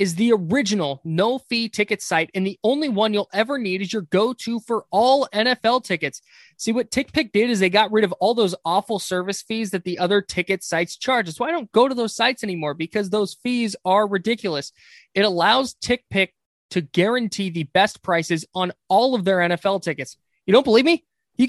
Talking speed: 205 wpm